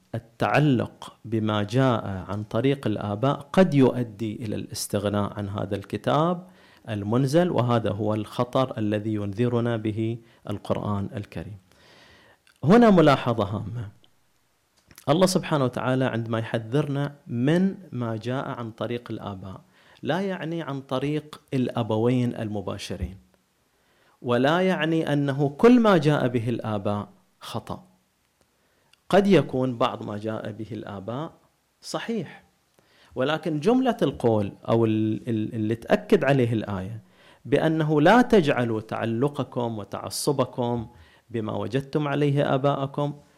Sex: male